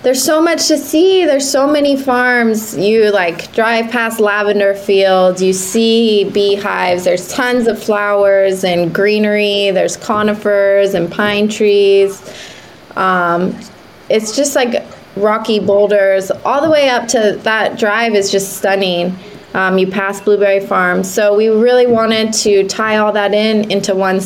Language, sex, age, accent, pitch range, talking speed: English, female, 20-39, American, 185-220 Hz, 150 wpm